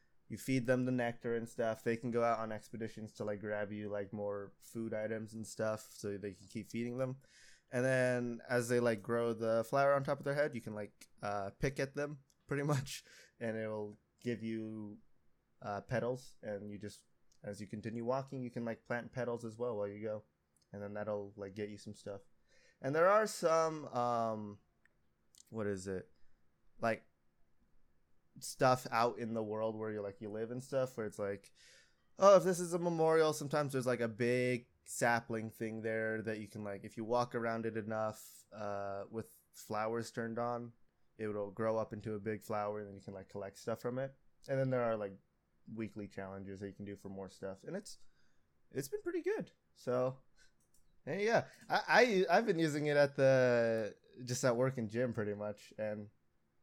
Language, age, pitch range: English, 20-39, 105-125 Hz